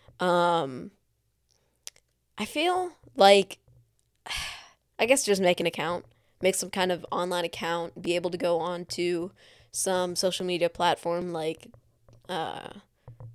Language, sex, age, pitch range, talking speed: English, female, 10-29, 160-195 Hz, 125 wpm